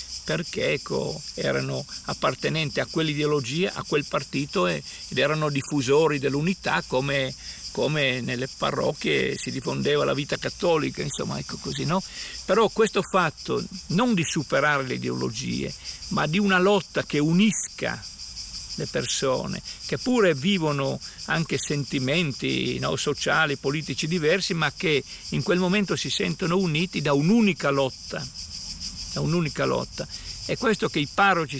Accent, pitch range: native, 140-175 Hz